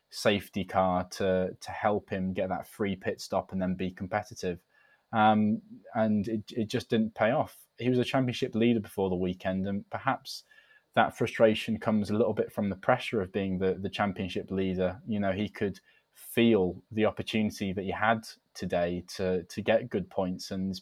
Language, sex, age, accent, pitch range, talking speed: English, male, 20-39, British, 90-110 Hz, 185 wpm